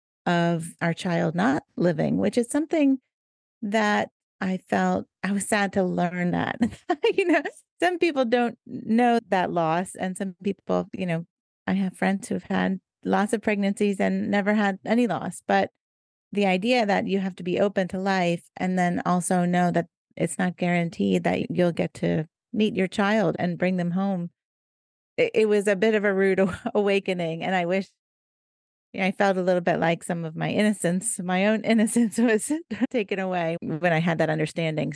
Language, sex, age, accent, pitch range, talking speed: English, female, 30-49, American, 175-215 Hz, 180 wpm